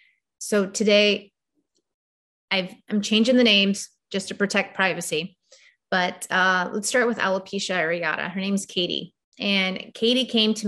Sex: female